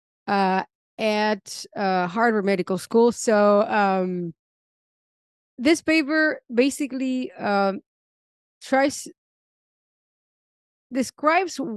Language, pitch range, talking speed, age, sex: English, 180-235 Hz, 70 wpm, 30-49, female